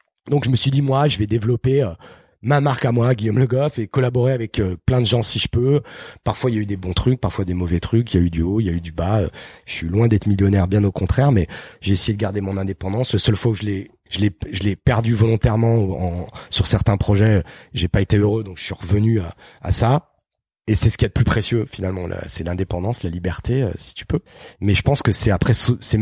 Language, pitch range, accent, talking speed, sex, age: French, 95-115 Hz, French, 275 wpm, male, 30-49